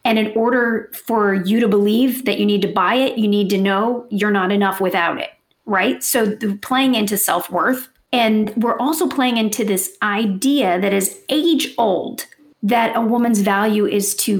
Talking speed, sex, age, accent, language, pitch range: 180 wpm, female, 40-59, American, English, 205-255 Hz